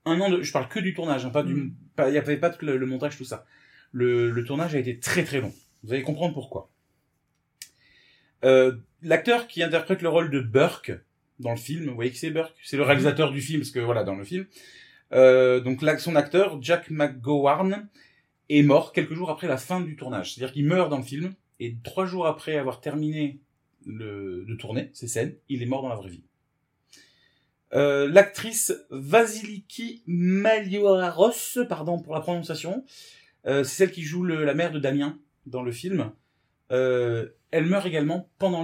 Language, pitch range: French, 135-180 Hz